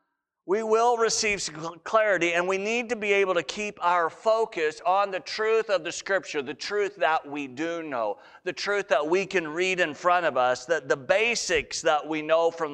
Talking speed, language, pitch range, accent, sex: 205 wpm, English, 140-180 Hz, American, male